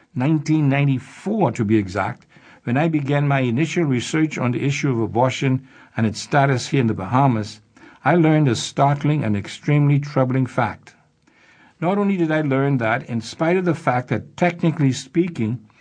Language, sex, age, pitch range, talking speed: English, male, 60-79, 120-155 Hz, 165 wpm